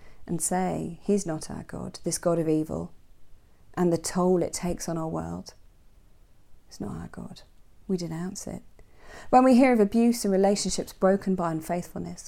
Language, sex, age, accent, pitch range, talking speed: English, female, 30-49, British, 165-200 Hz, 170 wpm